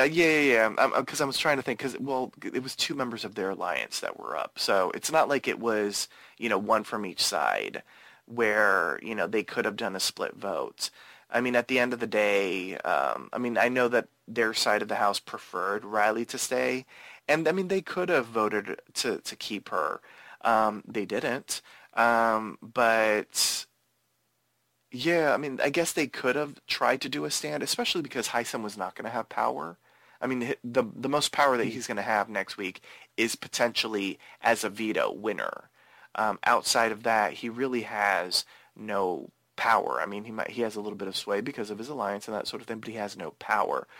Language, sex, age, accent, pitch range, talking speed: English, male, 30-49, American, 105-135 Hz, 215 wpm